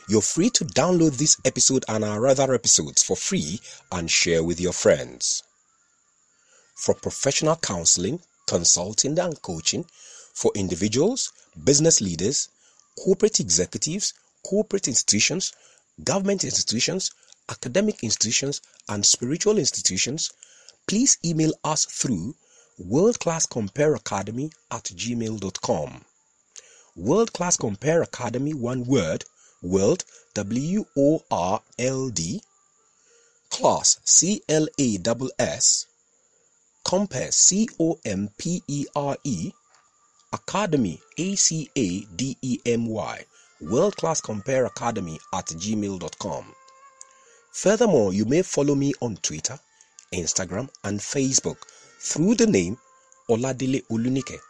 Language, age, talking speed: English, 40-59, 110 wpm